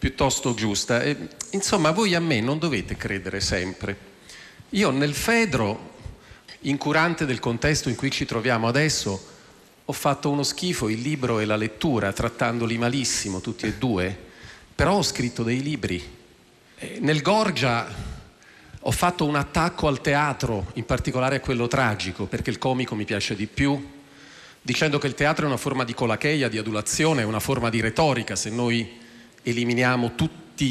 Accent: native